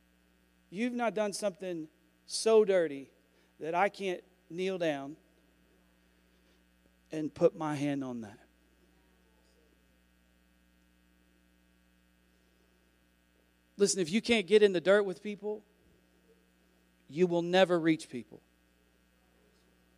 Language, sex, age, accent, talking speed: English, male, 40-59, American, 95 wpm